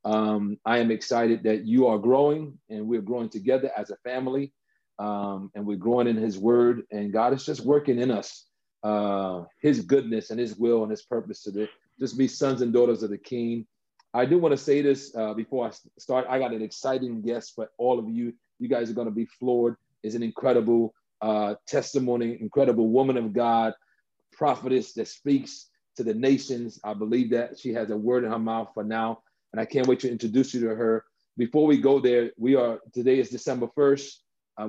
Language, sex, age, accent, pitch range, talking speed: English, male, 40-59, American, 110-130 Hz, 210 wpm